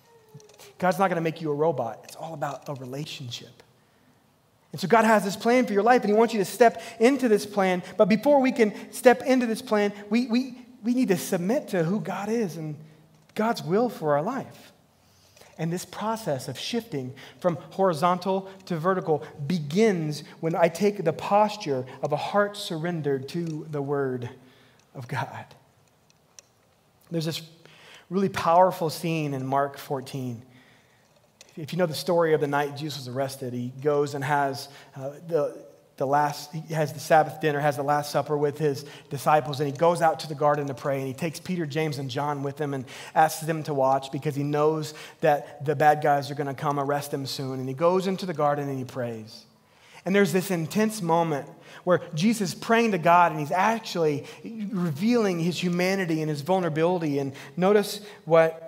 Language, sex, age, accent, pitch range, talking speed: English, male, 30-49, American, 145-190 Hz, 190 wpm